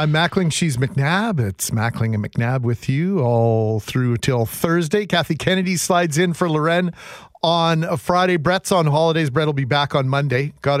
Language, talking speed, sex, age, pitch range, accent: English, 185 wpm, male, 40-59, 135-170 Hz, American